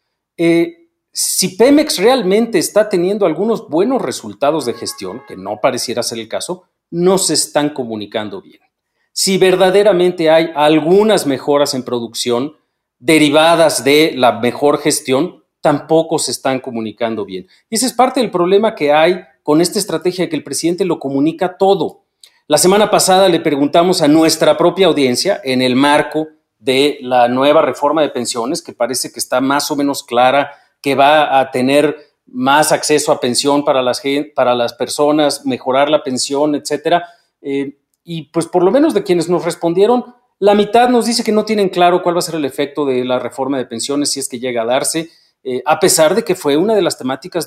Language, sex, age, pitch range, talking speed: Spanish, male, 40-59, 130-175 Hz, 180 wpm